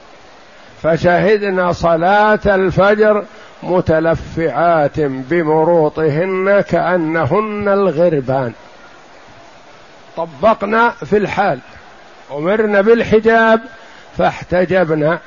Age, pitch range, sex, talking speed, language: 50-69, 160-200 Hz, male, 50 wpm, Arabic